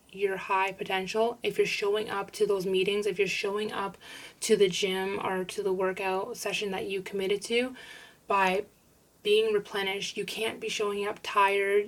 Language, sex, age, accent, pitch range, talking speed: English, female, 20-39, American, 190-215 Hz, 175 wpm